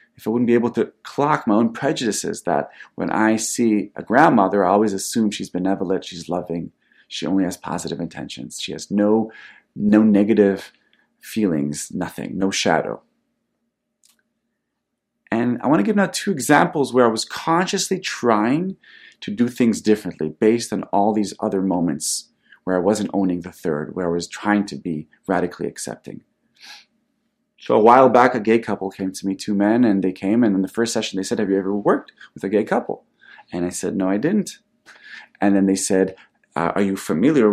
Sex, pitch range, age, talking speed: male, 95-115 Hz, 30-49, 190 wpm